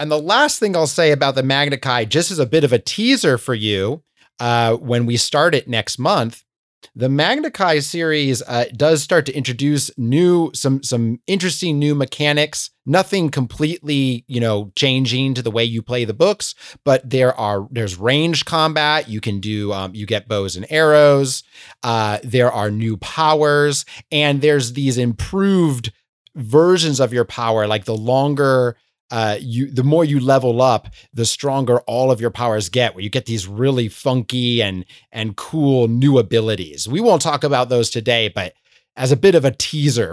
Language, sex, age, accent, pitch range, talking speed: English, male, 30-49, American, 115-150 Hz, 180 wpm